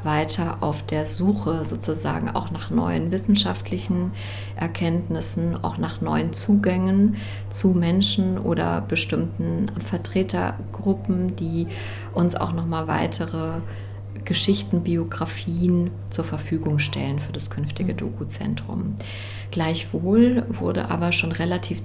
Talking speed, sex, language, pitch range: 105 wpm, female, German, 85-105 Hz